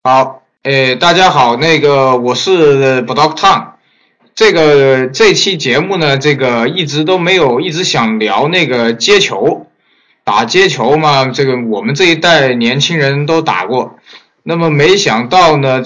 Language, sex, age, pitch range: Chinese, male, 20-39, 130-165 Hz